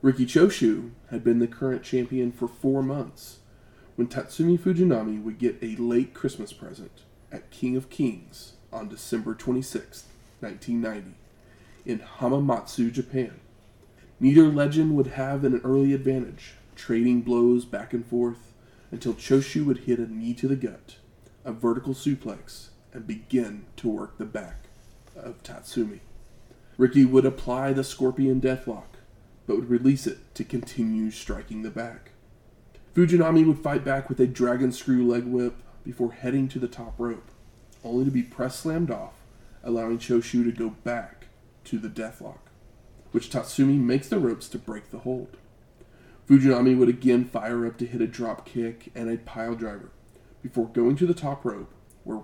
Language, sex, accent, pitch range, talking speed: English, male, American, 115-130 Hz, 155 wpm